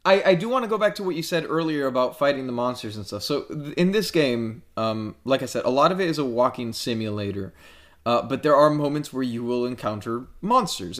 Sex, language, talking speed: male, English, 245 wpm